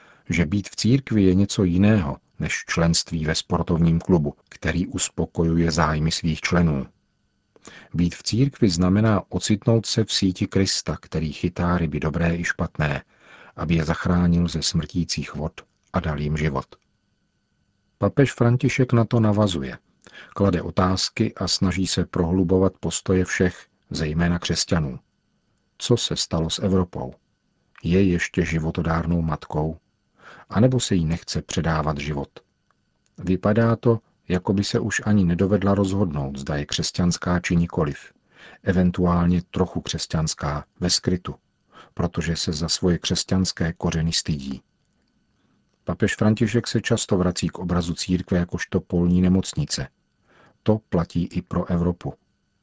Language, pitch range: Czech, 85-95 Hz